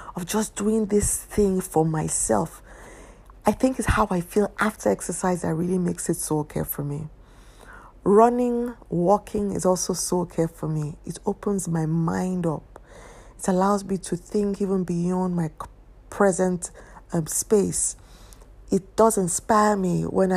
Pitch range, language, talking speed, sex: 170-200 Hz, English, 155 wpm, female